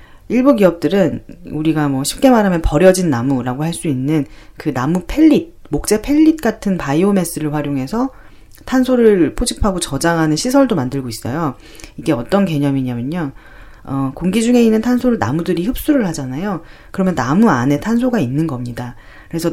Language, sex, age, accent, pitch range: Korean, female, 40-59, native, 135-205 Hz